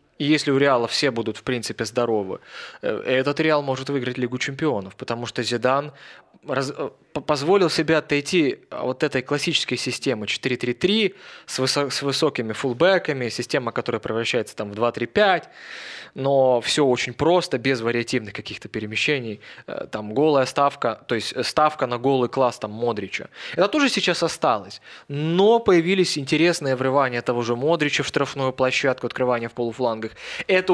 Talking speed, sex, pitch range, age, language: 140 wpm, male, 120-145 Hz, 20-39, Russian